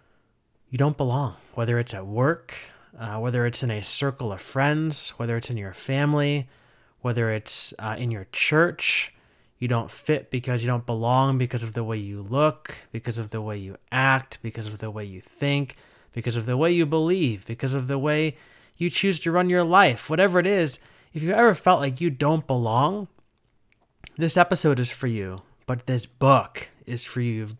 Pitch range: 120-145 Hz